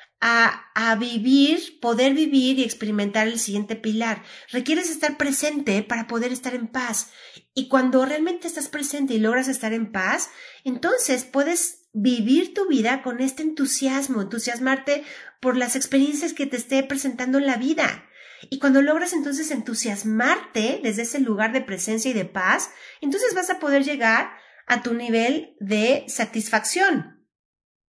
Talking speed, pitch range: 150 wpm, 225-285 Hz